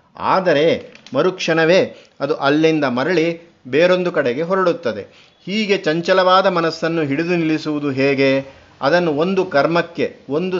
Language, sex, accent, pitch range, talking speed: Kannada, male, native, 140-170 Hz, 100 wpm